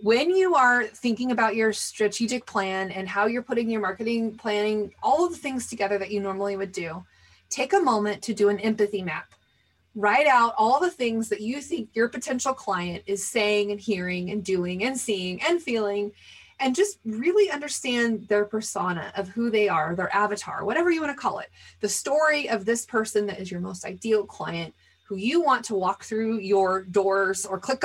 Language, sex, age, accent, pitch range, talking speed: English, female, 30-49, American, 200-245 Hz, 200 wpm